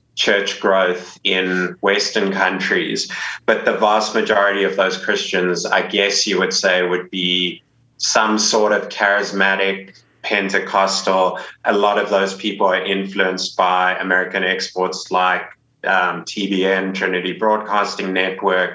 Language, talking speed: English, 130 wpm